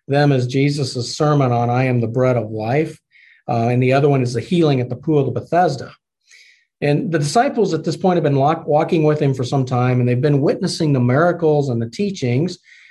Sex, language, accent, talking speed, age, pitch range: male, English, American, 225 wpm, 40-59, 130-165 Hz